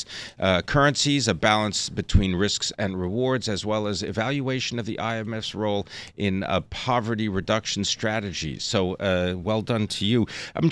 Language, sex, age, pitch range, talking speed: English, male, 40-59, 100-130 Hz, 155 wpm